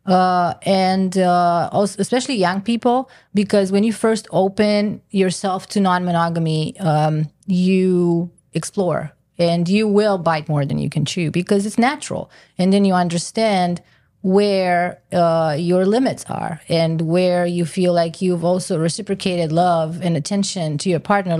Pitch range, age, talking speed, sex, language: 165-195 Hz, 30-49, 150 wpm, female, English